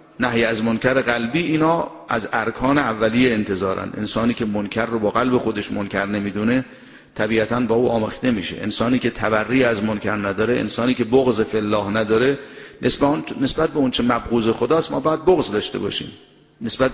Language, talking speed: Persian, 165 wpm